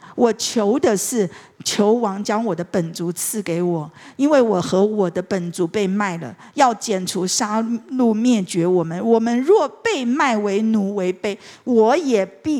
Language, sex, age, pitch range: Chinese, female, 50-69, 185-245 Hz